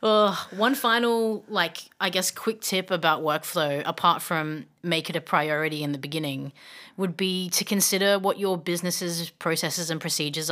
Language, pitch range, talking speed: English, 155-185 Hz, 160 wpm